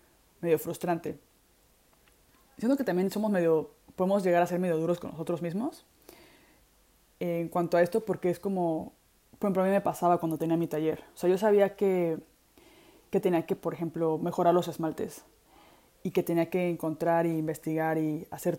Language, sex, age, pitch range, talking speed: Spanish, female, 20-39, 165-190 Hz, 180 wpm